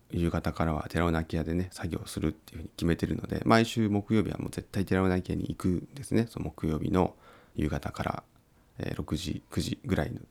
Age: 40-59